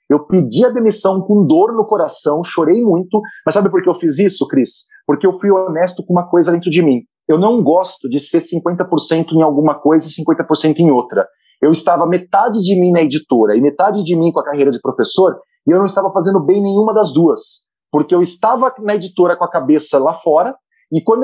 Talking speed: 220 wpm